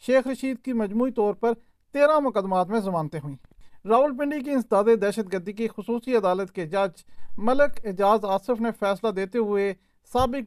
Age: 40-59